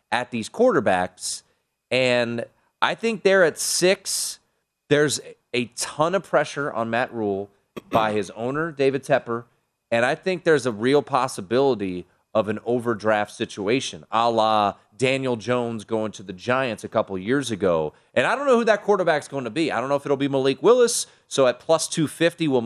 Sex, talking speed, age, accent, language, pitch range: male, 180 wpm, 30-49, American, English, 115-160 Hz